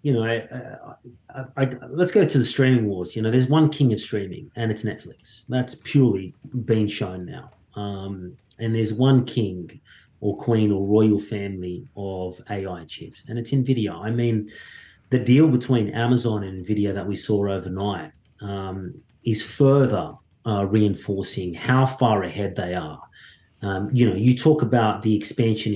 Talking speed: 160 wpm